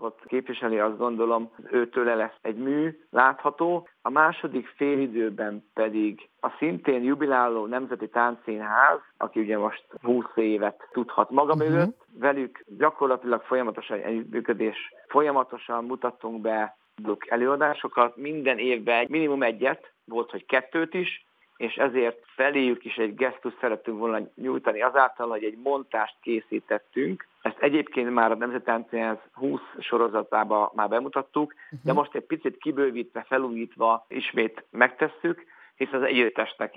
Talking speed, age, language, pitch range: 125 wpm, 50-69, Hungarian, 110-135 Hz